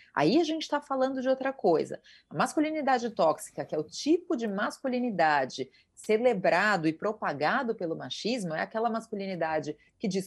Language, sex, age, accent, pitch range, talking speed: Portuguese, female, 30-49, Brazilian, 180-265 Hz, 160 wpm